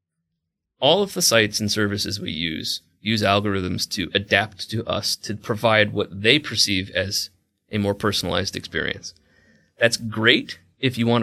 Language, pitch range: English, 95-115 Hz